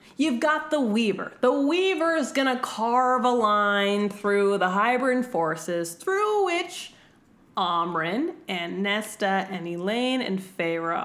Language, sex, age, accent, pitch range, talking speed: English, female, 20-39, American, 185-255 Hz, 125 wpm